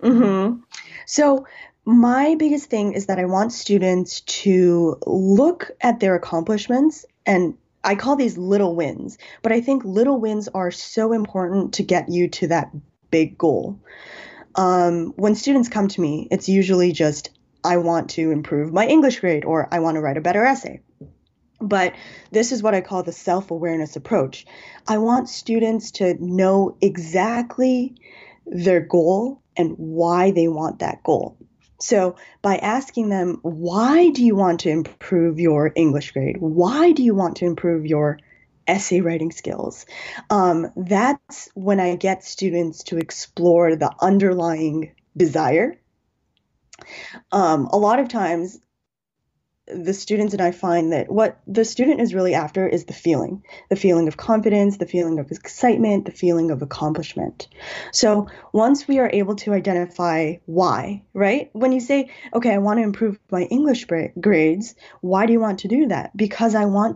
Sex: female